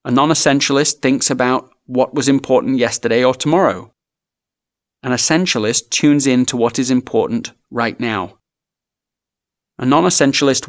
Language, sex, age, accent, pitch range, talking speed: English, male, 30-49, British, 115-145 Hz, 135 wpm